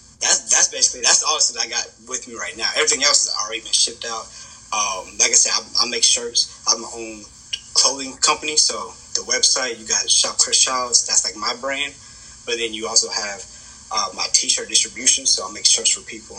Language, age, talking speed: English, 20-39, 210 wpm